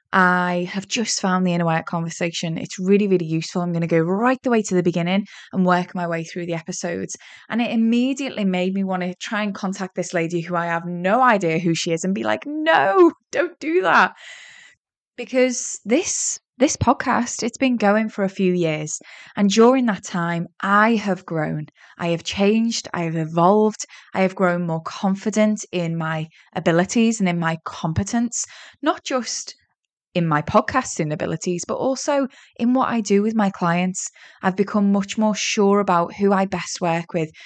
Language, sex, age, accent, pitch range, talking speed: English, female, 10-29, British, 175-220 Hz, 190 wpm